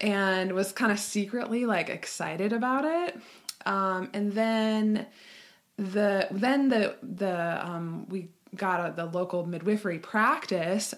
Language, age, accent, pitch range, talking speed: English, 20-39, American, 170-205 Hz, 130 wpm